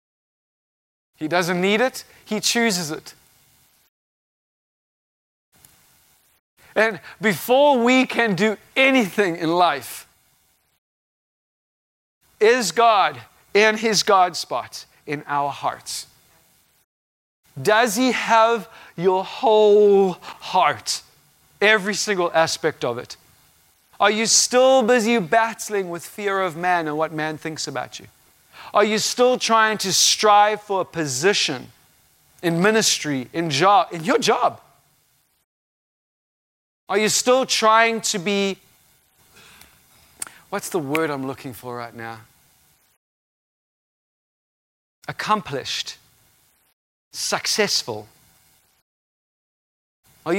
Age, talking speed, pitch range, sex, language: 40-59, 100 wpm, 145-220 Hz, male, English